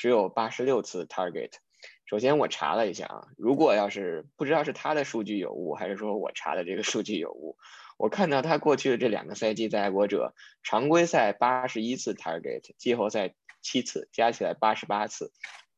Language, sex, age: Chinese, male, 10-29